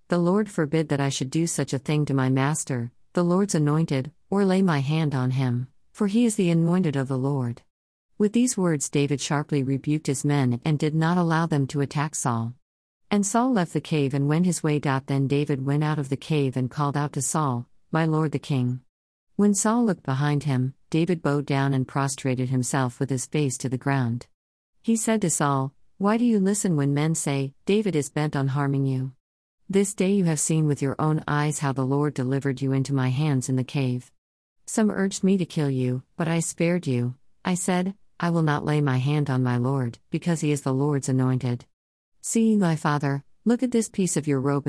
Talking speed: 220 wpm